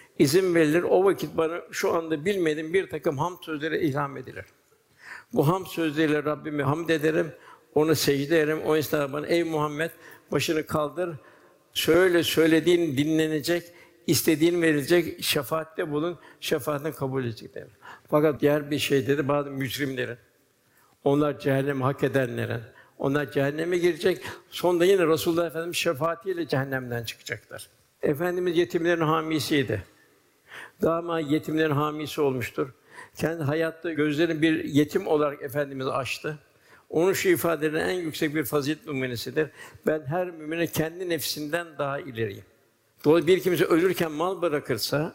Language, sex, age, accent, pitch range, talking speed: Turkish, male, 60-79, native, 145-165 Hz, 130 wpm